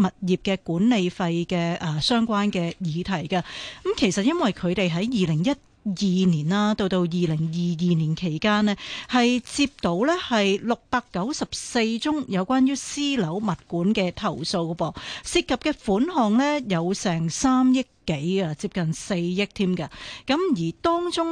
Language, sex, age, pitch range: Chinese, female, 40-59, 180-235 Hz